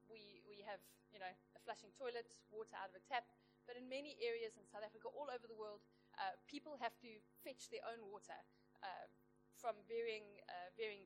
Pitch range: 215-265 Hz